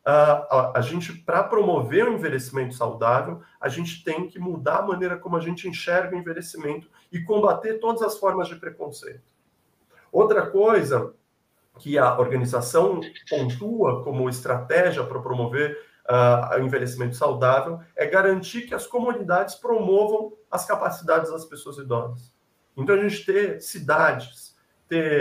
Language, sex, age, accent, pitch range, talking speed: Portuguese, male, 50-69, Brazilian, 130-180 Hz, 145 wpm